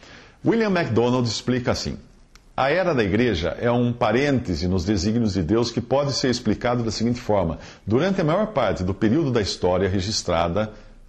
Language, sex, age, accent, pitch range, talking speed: English, male, 50-69, Brazilian, 105-140 Hz, 170 wpm